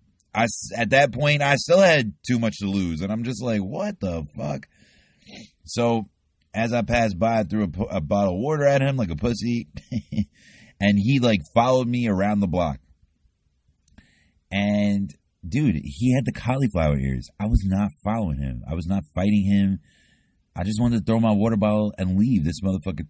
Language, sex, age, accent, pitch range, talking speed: English, male, 30-49, American, 80-110 Hz, 185 wpm